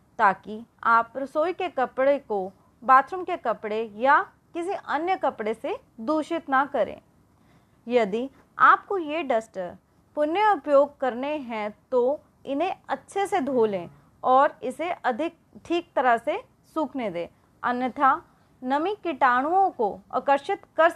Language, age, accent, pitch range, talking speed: English, 30-49, Indian, 235-320 Hz, 125 wpm